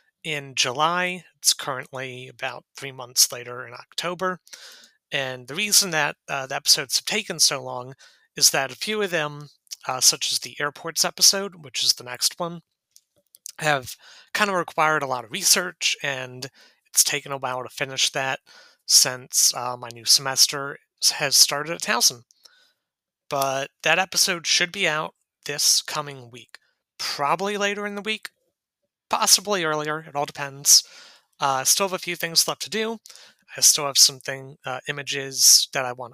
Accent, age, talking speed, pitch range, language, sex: American, 30-49, 165 wpm, 130-175 Hz, English, male